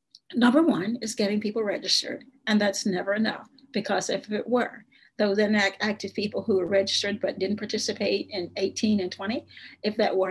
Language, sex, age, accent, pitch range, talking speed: English, female, 50-69, American, 185-220 Hz, 175 wpm